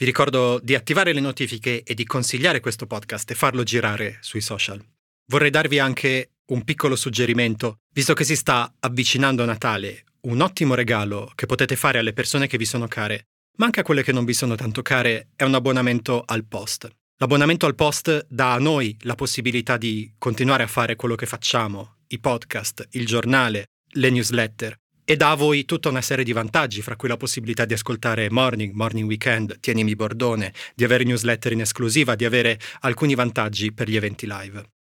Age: 30-49